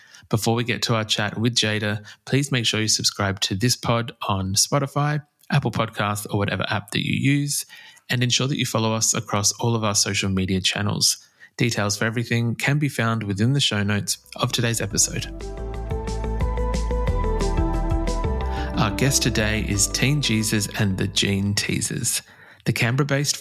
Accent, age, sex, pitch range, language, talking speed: Australian, 20-39, male, 100-125 Hz, English, 165 wpm